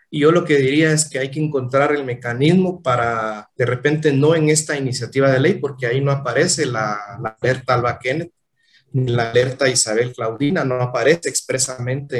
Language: Spanish